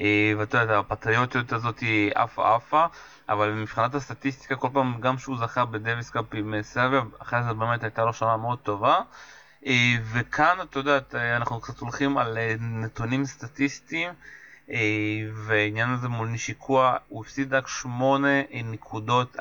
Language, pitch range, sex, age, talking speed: Hebrew, 115-135 Hz, male, 20-39, 140 wpm